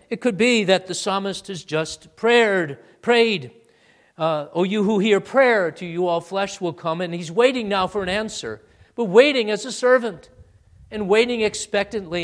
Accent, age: American, 50-69